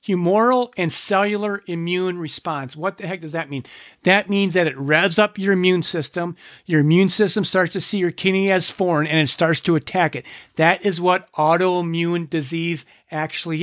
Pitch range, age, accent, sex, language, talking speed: 170-210 Hz, 40-59, American, male, English, 185 wpm